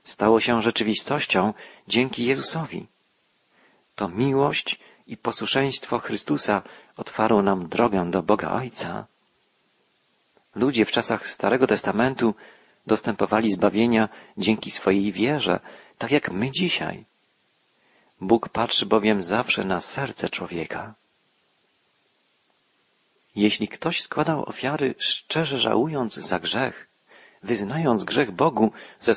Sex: male